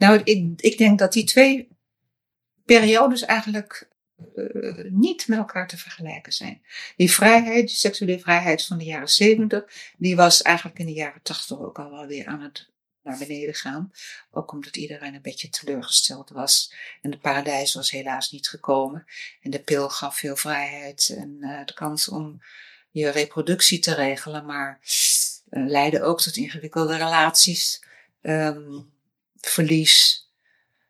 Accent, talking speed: Dutch, 150 wpm